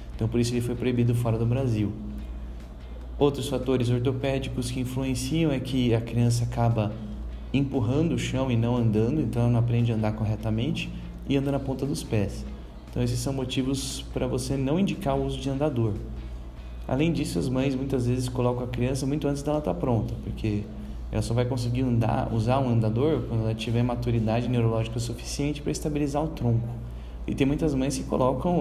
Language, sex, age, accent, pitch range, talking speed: Portuguese, male, 10-29, Brazilian, 110-135 Hz, 190 wpm